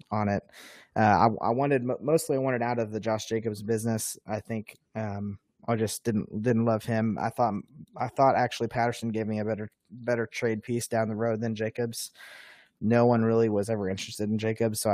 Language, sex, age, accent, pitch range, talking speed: English, male, 20-39, American, 105-115 Hz, 205 wpm